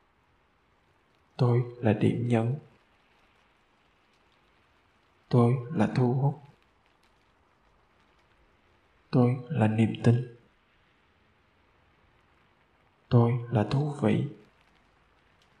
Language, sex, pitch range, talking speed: Vietnamese, male, 95-120 Hz, 60 wpm